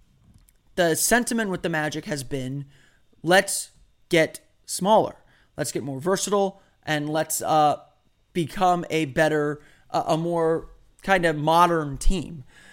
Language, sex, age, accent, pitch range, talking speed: English, male, 20-39, American, 150-180 Hz, 125 wpm